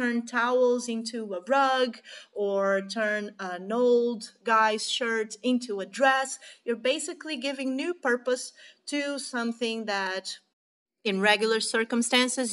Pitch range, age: 195-245 Hz, 30-49